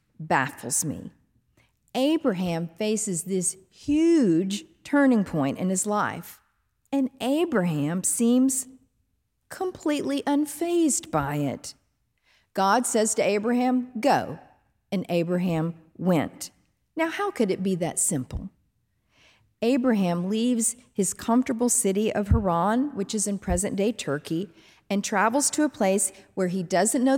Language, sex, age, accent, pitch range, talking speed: English, female, 50-69, American, 170-240 Hz, 120 wpm